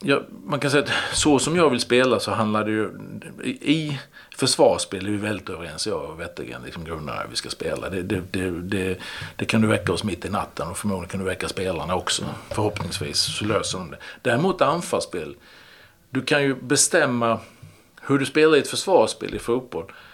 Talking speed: 195 wpm